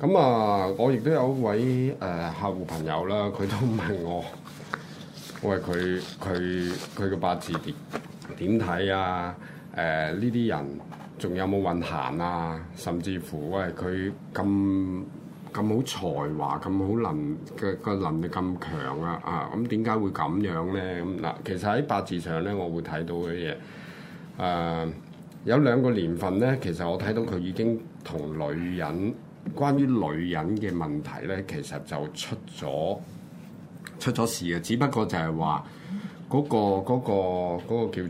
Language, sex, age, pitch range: Chinese, male, 20-39, 85-110 Hz